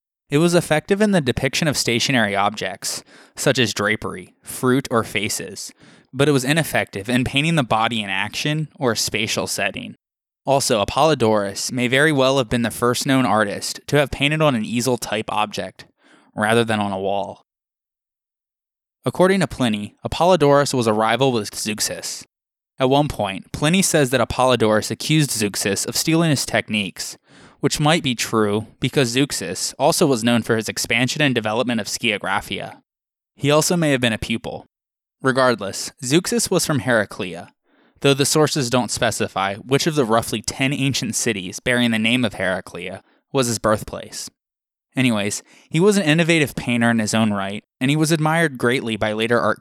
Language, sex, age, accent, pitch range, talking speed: English, male, 20-39, American, 110-145 Hz, 170 wpm